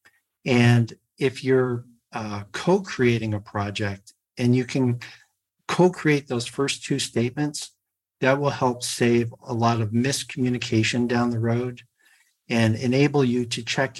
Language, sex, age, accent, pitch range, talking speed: English, male, 50-69, American, 110-135 Hz, 140 wpm